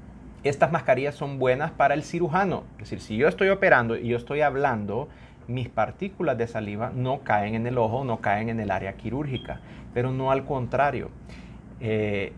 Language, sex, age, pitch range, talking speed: Spanish, male, 30-49, 110-140 Hz, 180 wpm